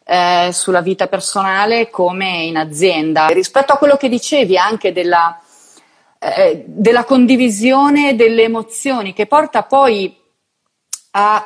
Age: 30-49